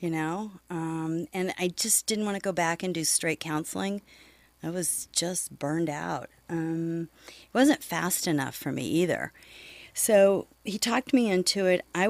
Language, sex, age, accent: English, female, 40-59, American